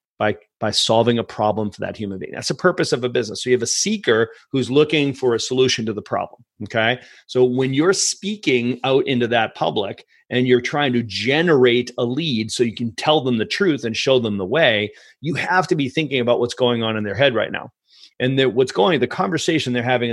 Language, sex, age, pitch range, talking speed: English, male, 30-49, 120-150 Hz, 235 wpm